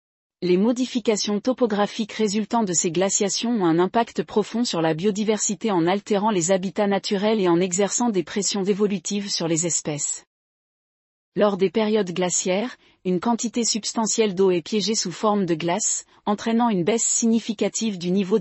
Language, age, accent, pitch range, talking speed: French, 40-59, French, 180-220 Hz, 155 wpm